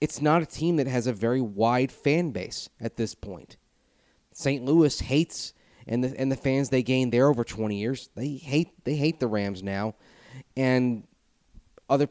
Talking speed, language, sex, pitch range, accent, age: 185 wpm, English, male, 110-135 Hz, American, 30-49